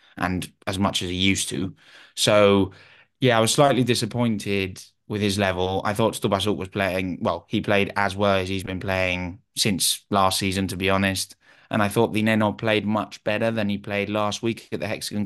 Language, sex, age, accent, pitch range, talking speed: English, male, 20-39, British, 95-110 Hz, 205 wpm